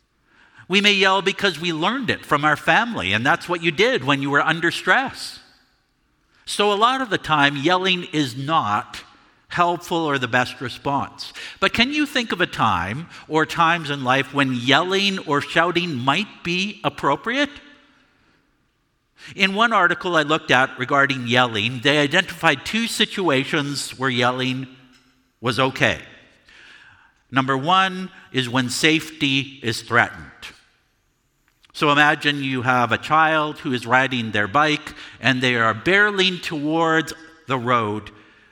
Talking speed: 145 wpm